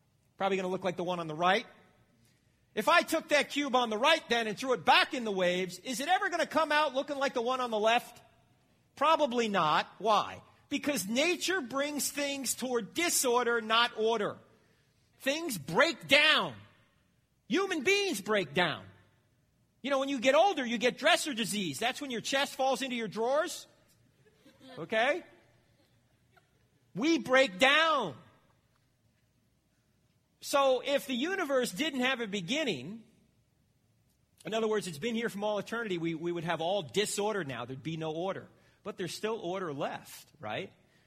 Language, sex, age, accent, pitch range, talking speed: English, male, 40-59, American, 165-270 Hz, 165 wpm